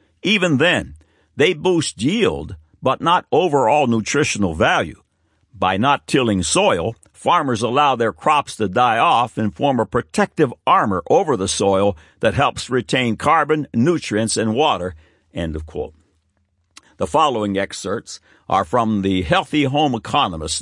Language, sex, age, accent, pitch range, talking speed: English, male, 60-79, American, 95-130 Hz, 140 wpm